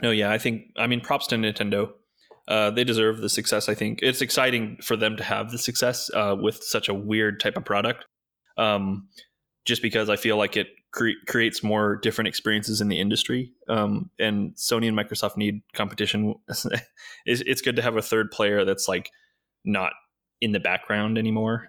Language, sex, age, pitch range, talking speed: English, male, 20-39, 105-115 Hz, 190 wpm